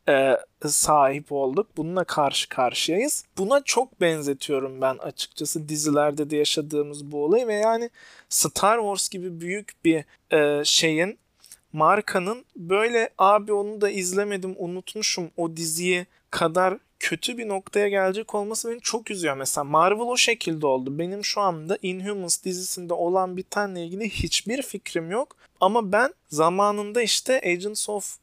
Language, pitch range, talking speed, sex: Turkish, 170-210 Hz, 140 wpm, male